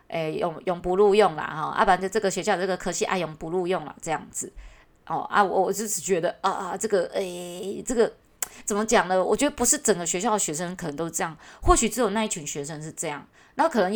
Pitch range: 165-220 Hz